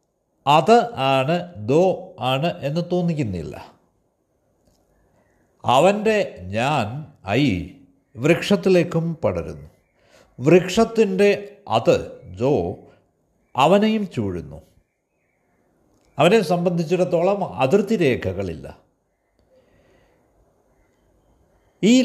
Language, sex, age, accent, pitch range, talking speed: Malayalam, male, 60-79, native, 120-195 Hz, 55 wpm